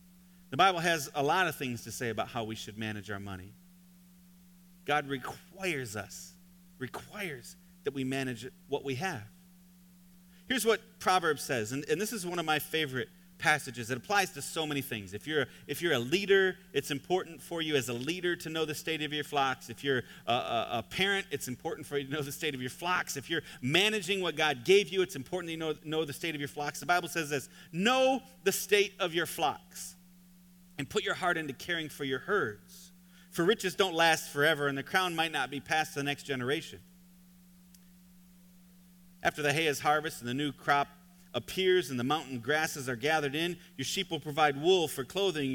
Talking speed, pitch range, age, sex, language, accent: 210 wpm, 145-180 Hz, 40-59, male, English, American